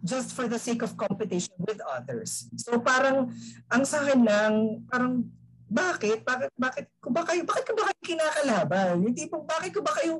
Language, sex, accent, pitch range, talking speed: Filipino, female, native, 180-255 Hz, 155 wpm